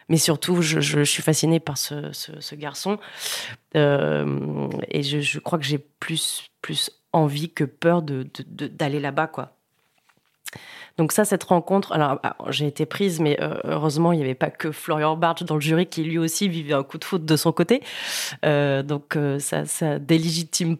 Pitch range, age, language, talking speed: 155-180 Hz, 30-49, French, 190 wpm